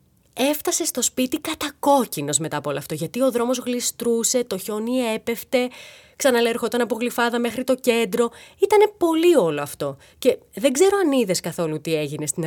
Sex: female